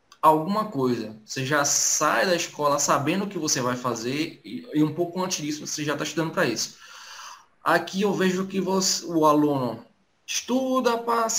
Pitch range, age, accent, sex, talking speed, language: 130-190 Hz, 20-39, Brazilian, male, 175 wpm, Portuguese